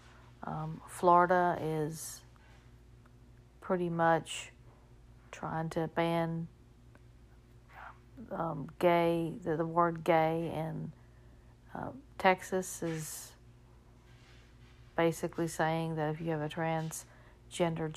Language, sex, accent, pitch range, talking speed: English, female, American, 150-170 Hz, 85 wpm